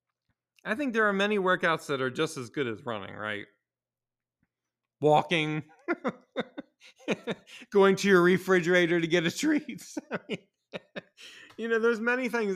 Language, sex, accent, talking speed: English, male, American, 135 wpm